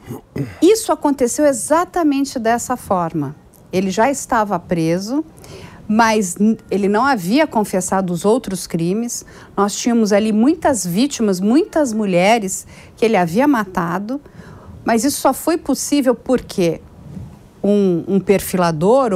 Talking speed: 115 wpm